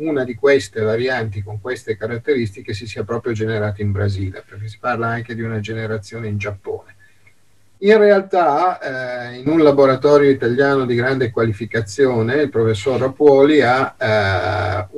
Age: 50-69